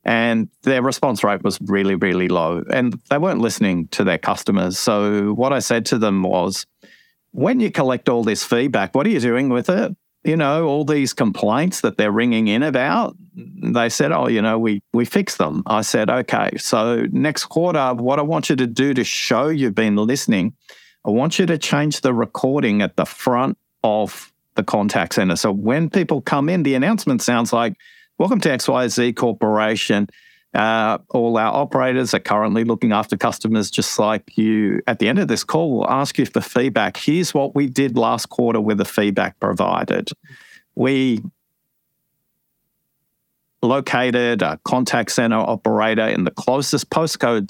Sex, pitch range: male, 110-145 Hz